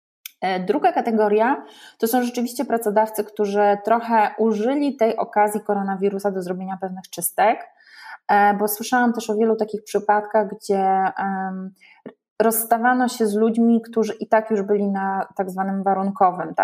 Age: 20-39